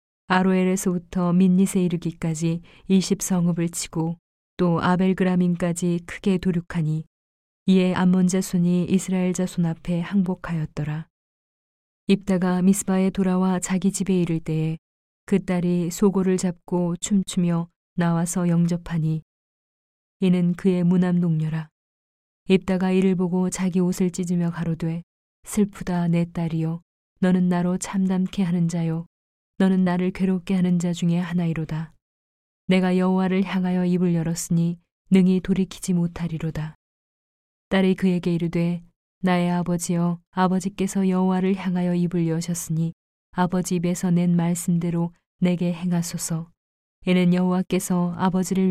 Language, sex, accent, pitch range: Korean, female, native, 170-185 Hz